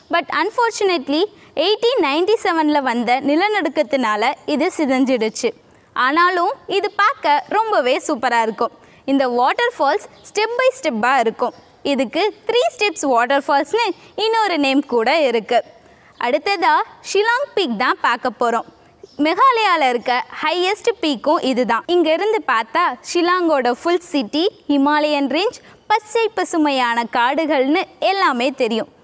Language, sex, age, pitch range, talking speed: Tamil, female, 20-39, 265-380 Hz, 115 wpm